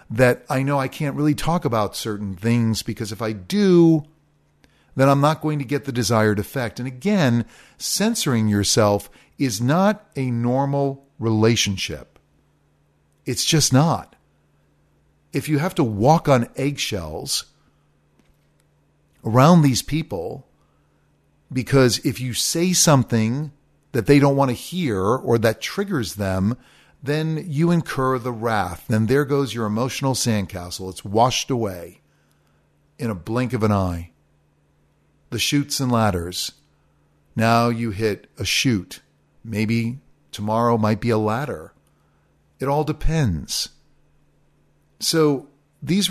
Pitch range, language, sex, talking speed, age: 105-145 Hz, English, male, 130 wpm, 50-69